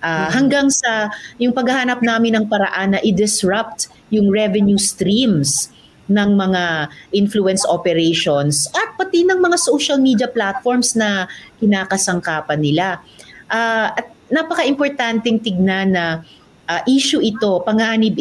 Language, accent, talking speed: Filipino, native, 120 wpm